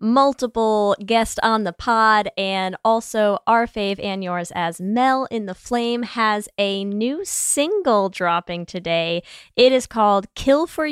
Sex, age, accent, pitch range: female, 10-29, American, 195-255 Hz